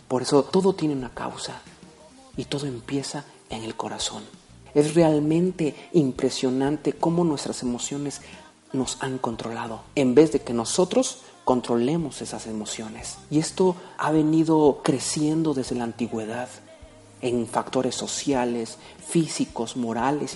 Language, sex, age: Spanish, male, 40-59